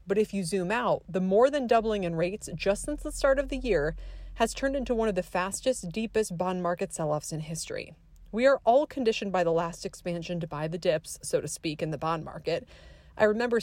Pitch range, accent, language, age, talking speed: 165-225 Hz, American, English, 30-49, 230 wpm